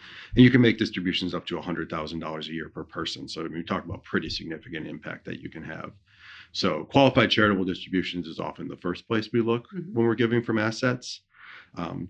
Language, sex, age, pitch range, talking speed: English, male, 40-59, 85-110 Hz, 200 wpm